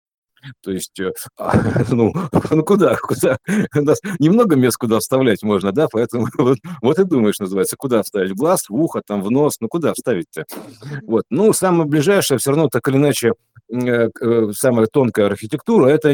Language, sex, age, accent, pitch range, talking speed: Russian, male, 50-69, native, 115-165 Hz, 165 wpm